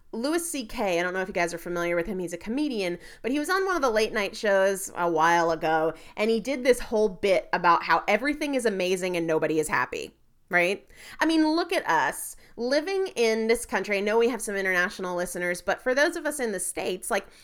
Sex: female